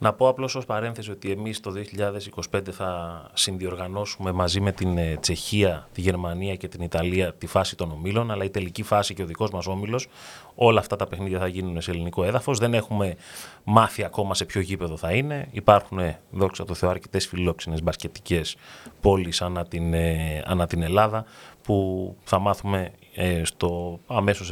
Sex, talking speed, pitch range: male, 165 wpm, 90-110 Hz